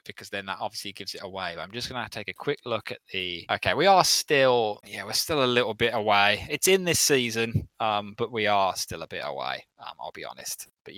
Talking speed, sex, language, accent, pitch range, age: 250 wpm, male, English, British, 110-140 Hz, 20-39